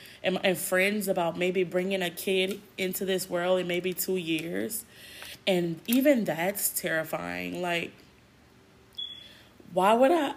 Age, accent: 20-39, American